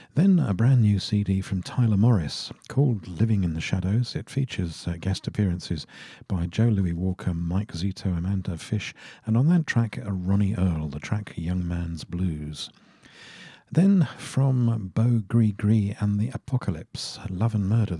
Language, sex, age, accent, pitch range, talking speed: English, male, 50-69, British, 90-115 Hz, 165 wpm